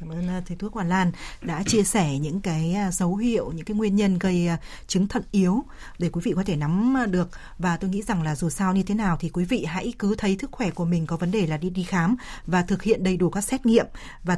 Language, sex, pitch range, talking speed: Vietnamese, female, 175-215 Hz, 265 wpm